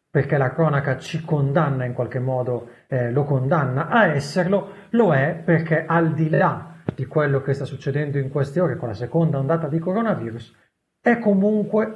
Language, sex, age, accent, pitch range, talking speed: Italian, male, 30-49, native, 125-170 Hz, 175 wpm